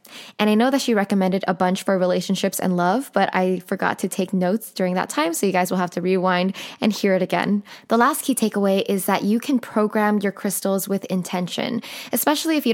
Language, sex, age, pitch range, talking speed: English, female, 10-29, 185-225 Hz, 225 wpm